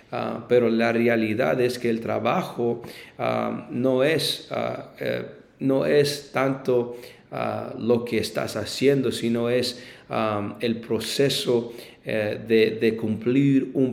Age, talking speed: 40-59, 135 wpm